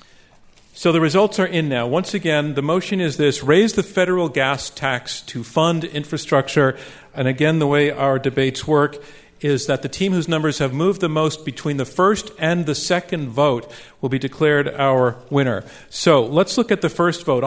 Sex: male